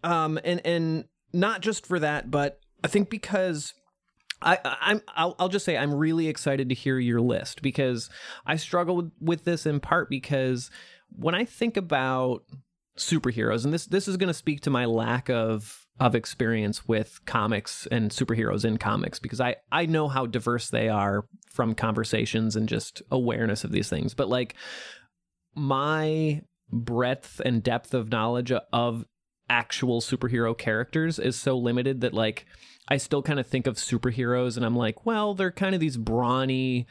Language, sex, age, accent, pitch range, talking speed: English, male, 30-49, American, 120-160 Hz, 175 wpm